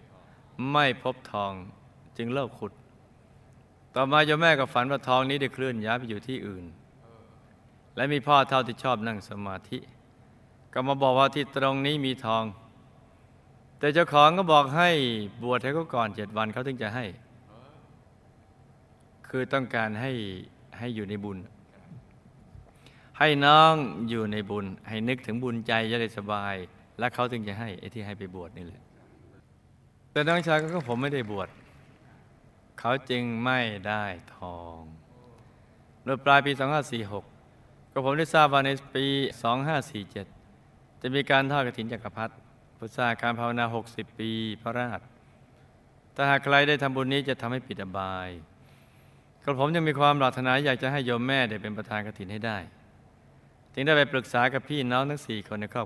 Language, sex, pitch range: Thai, male, 110-135 Hz